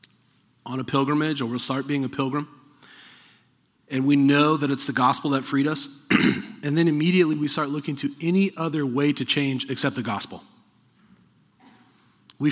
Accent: American